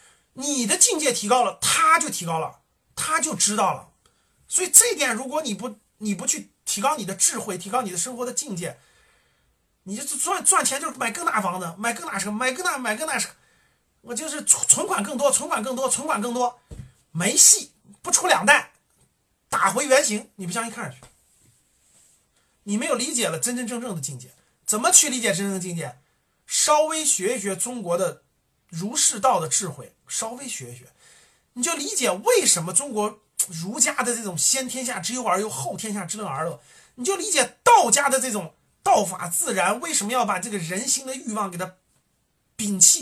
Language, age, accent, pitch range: Chinese, 30-49, native, 185-270 Hz